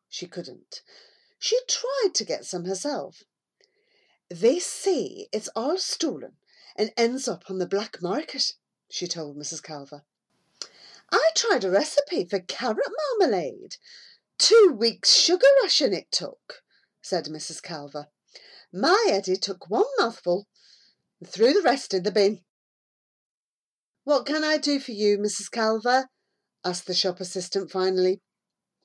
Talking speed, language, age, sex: 135 wpm, English, 40-59, female